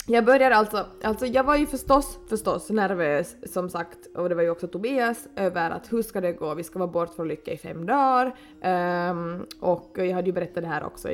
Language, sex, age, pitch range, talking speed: Swedish, female, 20-39, 180-245 Hz, 220 wpm